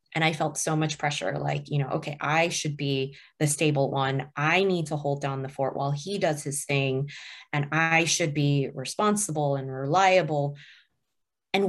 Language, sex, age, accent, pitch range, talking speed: English, female, 20-39, American, 145-170 Hz, 185 wpm